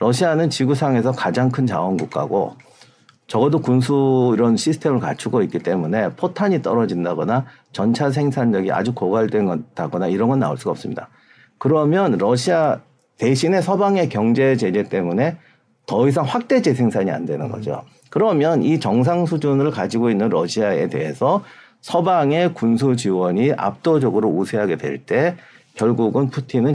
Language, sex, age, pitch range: Korean, male, 50-69, 115-150 Hz